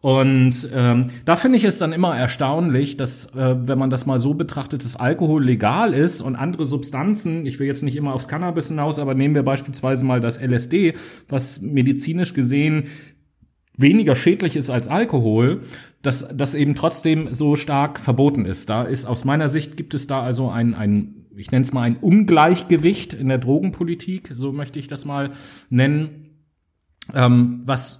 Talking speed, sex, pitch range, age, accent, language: 175 wpm, male, 120-145 Hz, 30-49, German, German